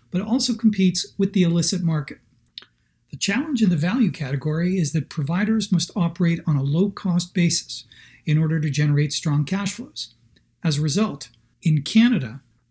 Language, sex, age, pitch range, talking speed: English, male, 40-59, 150-190 Hz, 160 wpm